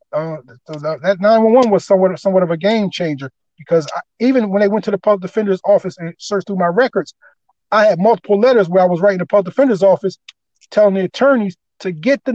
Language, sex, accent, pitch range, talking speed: English, male, American, 165-210 Hz, 220 wpm